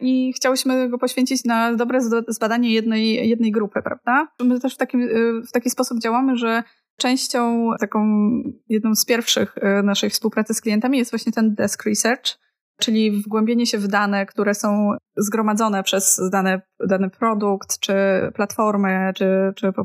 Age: 20-39